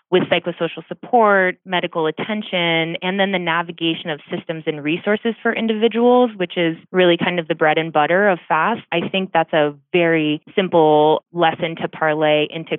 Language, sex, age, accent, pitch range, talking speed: English, female, 20-39, American, 160-185 Hz, 170 wpm